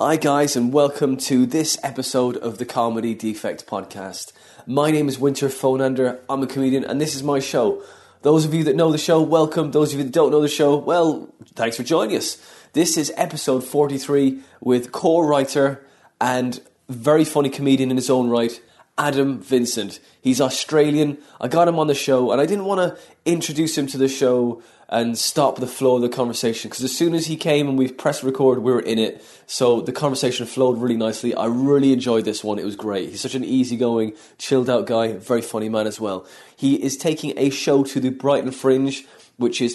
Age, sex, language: 20-39, male, English